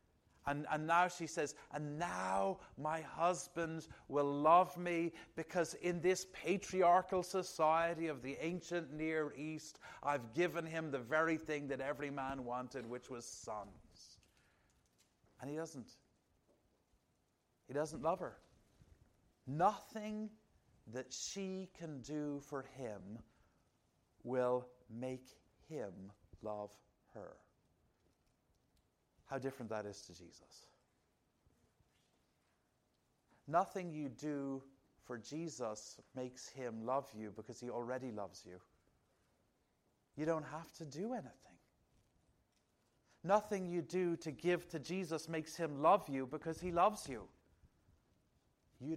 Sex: male